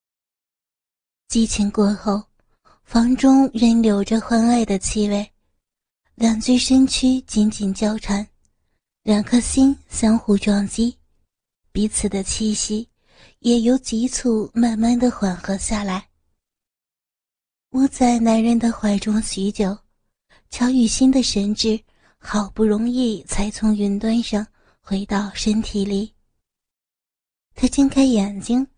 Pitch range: 210-240 Hz